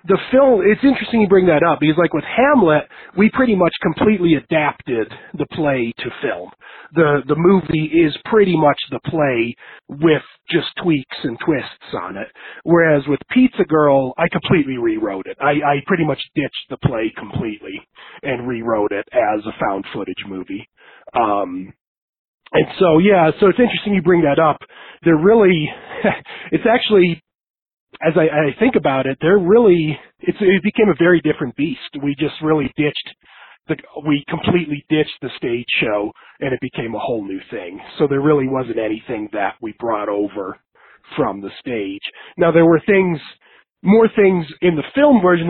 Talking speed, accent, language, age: 175 wpm, American, English, 40-59